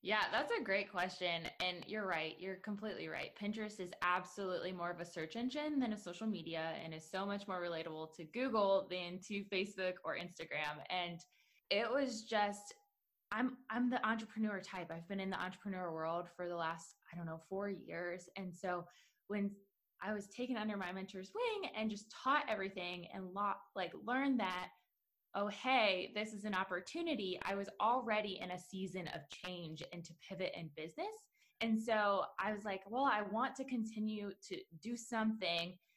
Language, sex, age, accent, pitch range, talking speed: English, female, 20-39, American, 180-220 Hz, 185 wpm